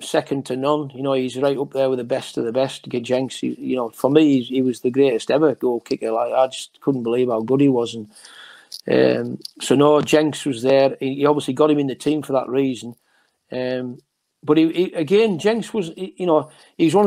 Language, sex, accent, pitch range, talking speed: English, male, British, 135-165 Hz, 230 wpm